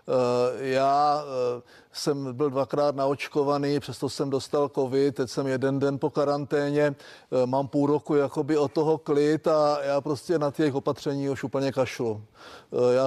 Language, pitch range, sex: Czech, 135-150 Hz, male